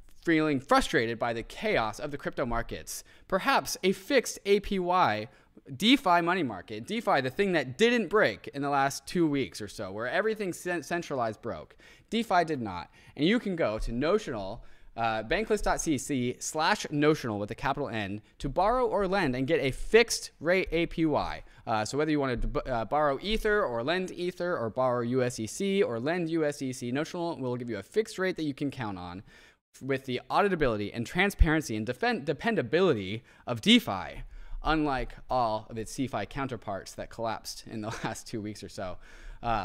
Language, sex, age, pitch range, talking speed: English, male, 20-39, 115-185 Hz, 175 wpm